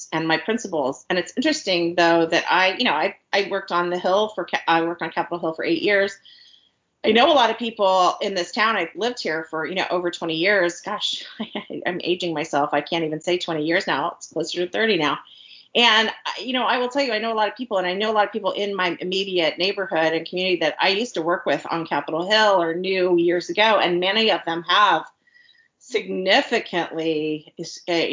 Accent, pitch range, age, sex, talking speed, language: American, 165-215 Hz, 30-49, female, 230 wpm, English